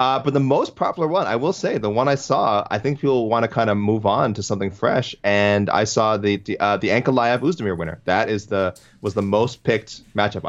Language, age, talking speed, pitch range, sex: English, 30-49, 240 wpm, 95-120 Hz, male